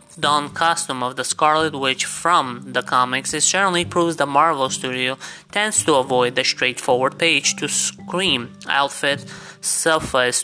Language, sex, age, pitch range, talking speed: English, male, 20-39, 135-170 Hz, 145 wpm